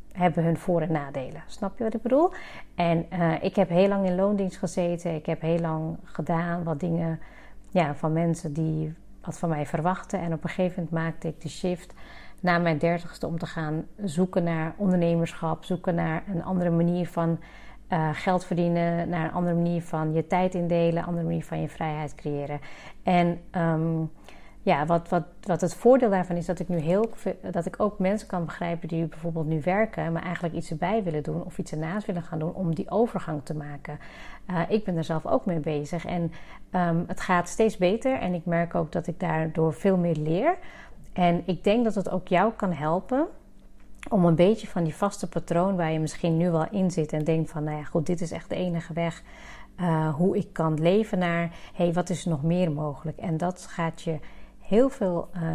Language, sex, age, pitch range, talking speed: Dutch, female, 40-59, 165-185 Hz, 210 wpm